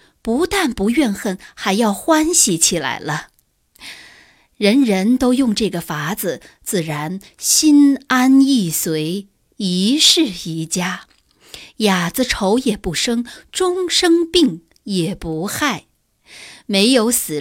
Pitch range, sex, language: 180-255 Hz, female, Chinese